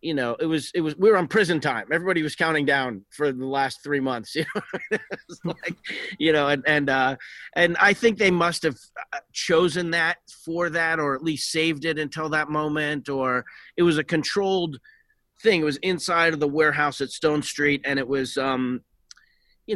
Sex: male